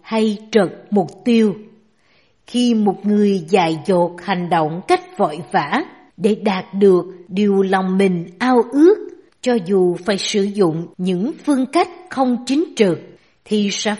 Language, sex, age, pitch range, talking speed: Vietnamese, female, 60-79, 185-265 Hz, 150 wpm